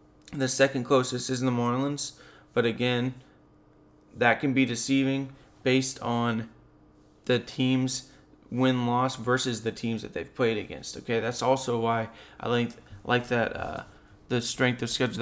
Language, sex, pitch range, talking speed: English, male, 115-130 Hz, 155 wpm